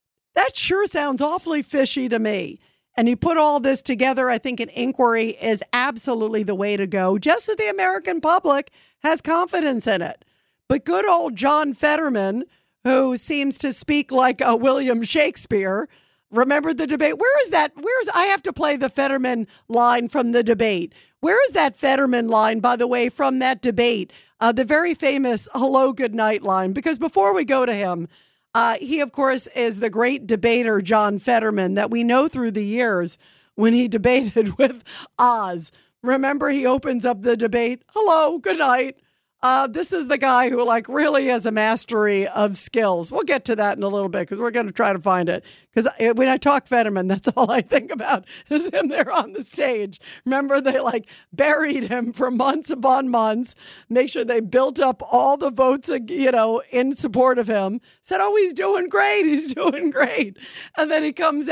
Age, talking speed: 50-69, 190 wpm